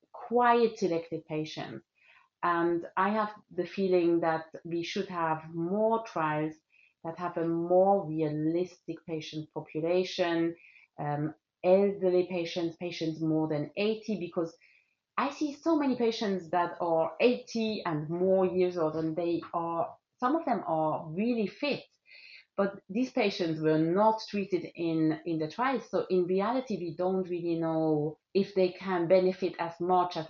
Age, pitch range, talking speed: 30-49, 160-200 Hz, 145 wpm